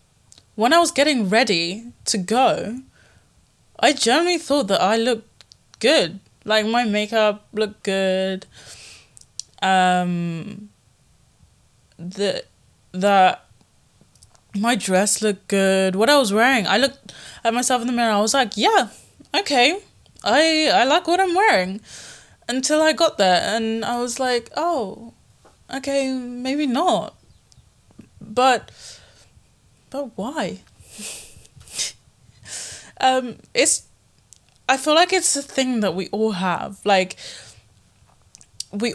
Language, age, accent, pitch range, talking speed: English, 20-39, British, 195-260 Hz, 120 wpm